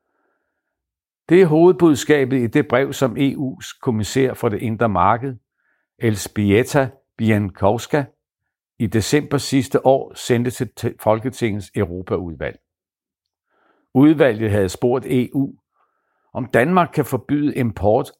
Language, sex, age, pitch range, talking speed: Danish, male, 60-79, 100-130 Hz, 105 wpm